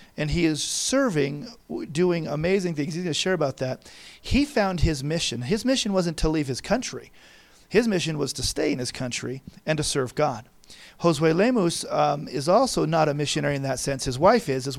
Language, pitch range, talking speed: English, 145-185 Hz, 205 wpm